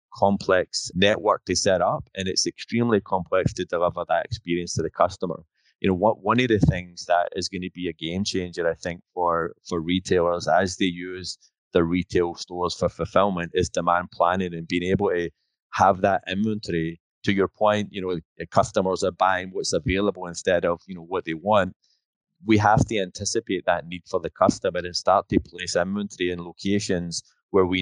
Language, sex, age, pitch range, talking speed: English, male, 20-39, 85-95 Hz, 190 wpm